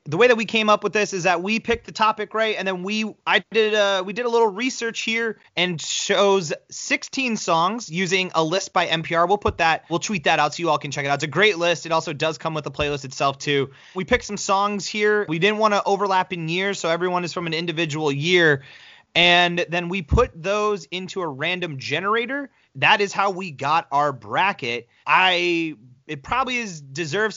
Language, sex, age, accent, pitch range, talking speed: English, male, 30-49, American, 150-200 Hz, 225 wpm